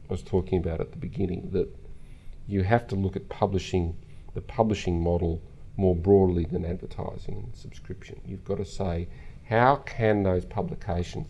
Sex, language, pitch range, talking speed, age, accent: male, English, 85-100 Hz, 165 wpm, 40-59, Australian